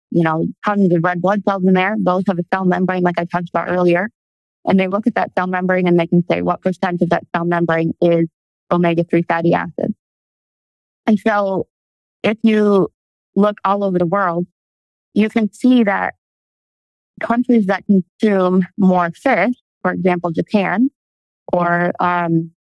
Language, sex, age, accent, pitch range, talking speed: English, female, 30-49, American, 165-195 Hz, 170 wpm